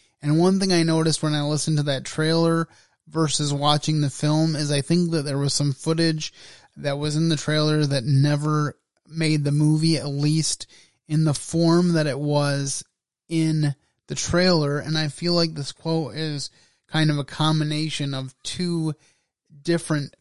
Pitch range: 145-165 Hz